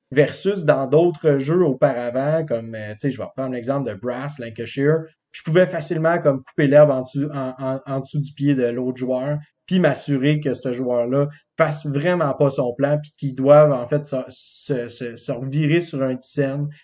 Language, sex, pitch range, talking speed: French, male, 135-155 Hz, 180 wpm